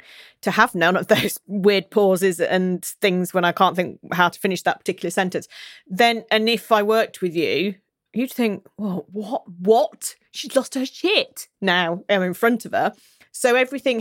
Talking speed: 190 wpm